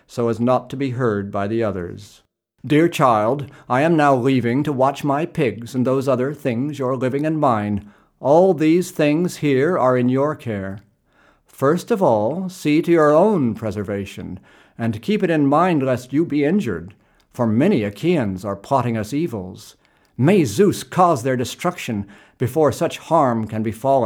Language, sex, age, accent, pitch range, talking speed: English, male, 50-69, American, 110-155 Hz, 170 wpm